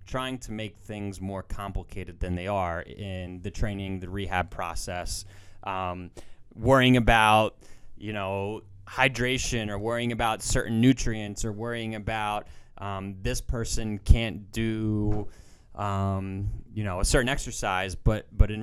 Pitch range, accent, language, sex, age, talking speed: 95-115 Hz, American, English, male, 20-39, 140 wpm